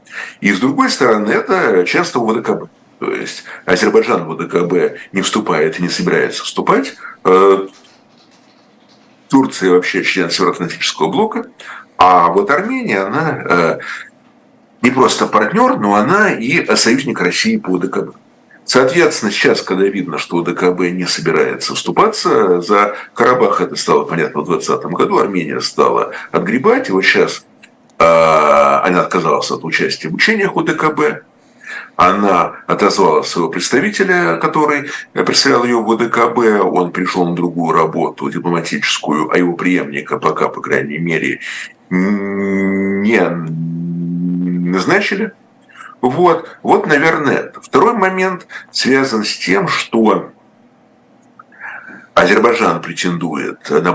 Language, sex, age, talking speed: Russian, male, 50-69, 115 wpm